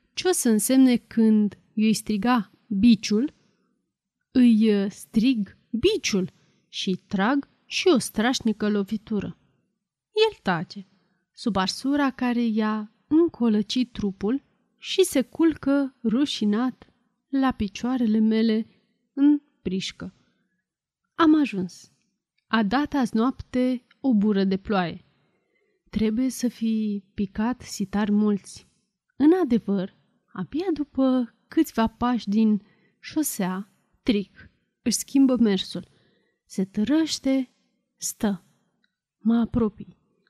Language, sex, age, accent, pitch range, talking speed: Romanian, female, 30-49, native, 200-255 Hz, 100 wpm